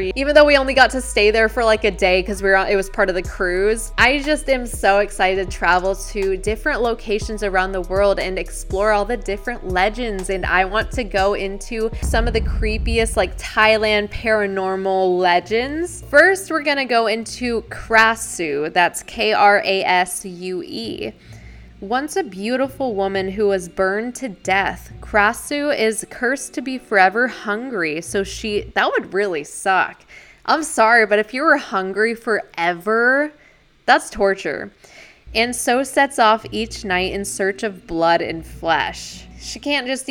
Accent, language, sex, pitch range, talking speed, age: American, English, female, 195-250 Hz, 165 wpm, 20-39